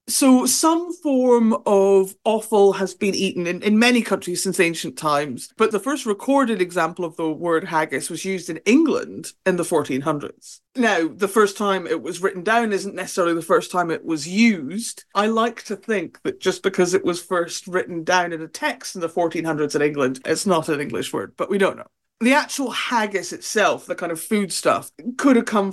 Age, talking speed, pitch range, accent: 40-59, 205 wpm, 175-220 Hz, British